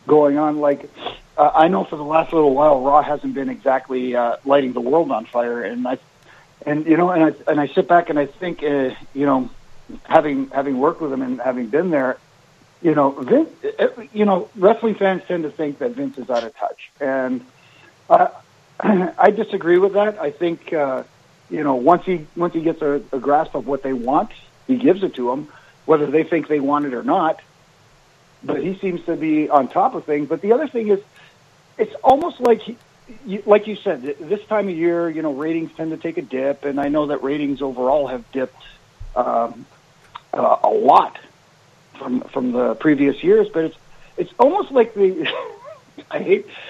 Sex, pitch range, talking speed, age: male, 140-185 Hz, 200 wpm, 50-69